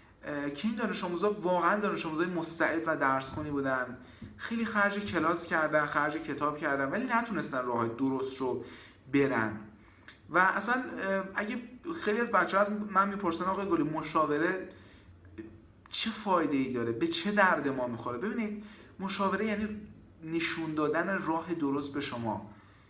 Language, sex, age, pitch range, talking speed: Persian, male, 30-49, 135-190 Hz, 140 wpm